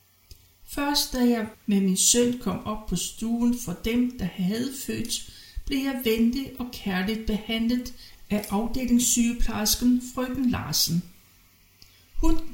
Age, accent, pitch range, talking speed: 60-79, native, 170-245 Hz, 125 wpm